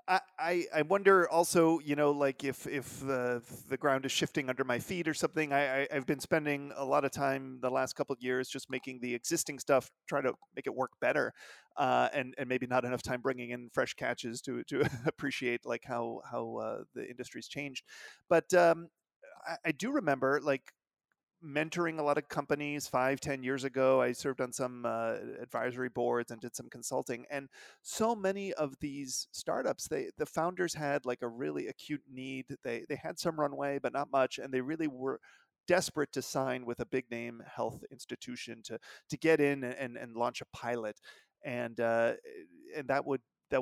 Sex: male